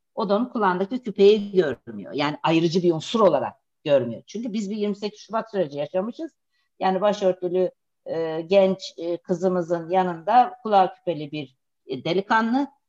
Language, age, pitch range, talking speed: Turkish, 50-69, 165-210 Hz, 135 wpm